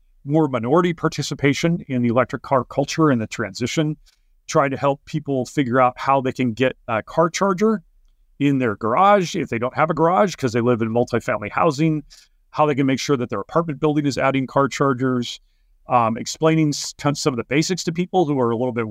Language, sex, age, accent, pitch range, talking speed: English, male, 40-59, American, 120-150 Hz, 205 wpm